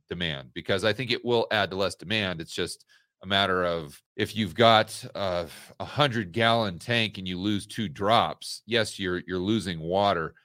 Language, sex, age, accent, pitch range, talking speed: English, male, 40-59, American, 100-125 Hz, 180 wpm